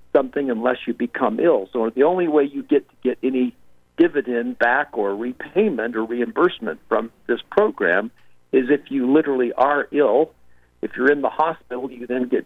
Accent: American